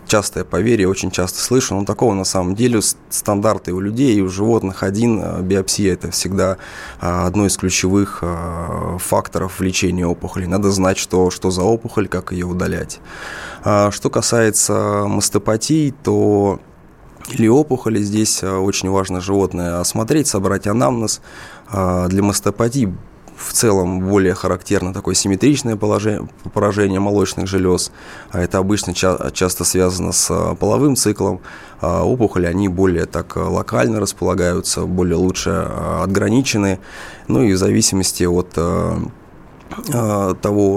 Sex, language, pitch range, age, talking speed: male, Russian, 90-105 Hz, 20-39, 120 wpm